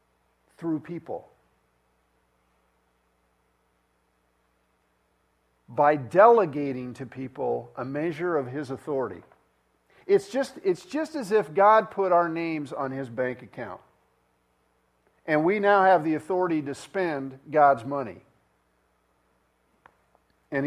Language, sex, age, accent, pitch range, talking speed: English, male, 50-69, American, 135-185 Hz, 100 wpm